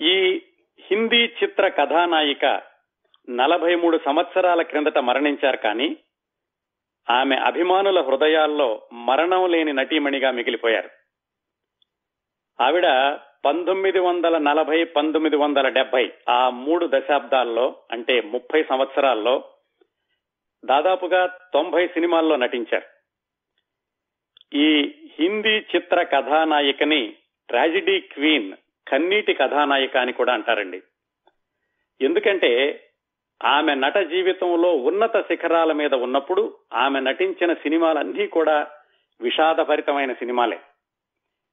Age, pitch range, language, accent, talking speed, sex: 40-59, 150-225 Hz, Telugu, native, 80 wpm, male